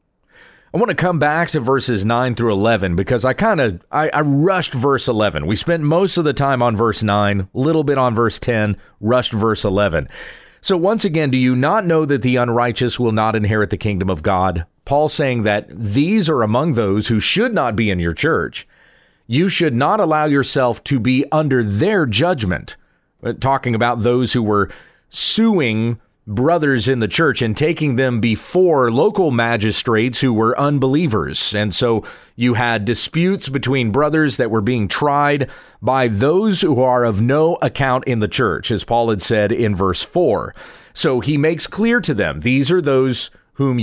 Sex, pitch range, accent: male, 110-150 Hz, American